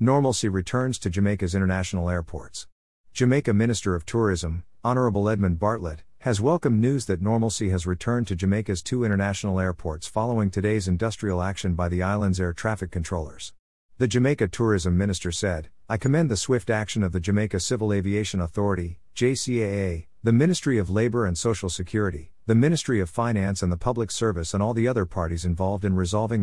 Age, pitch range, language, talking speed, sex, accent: 50-69, 90-110 Hz, English, 170 wpm, male, American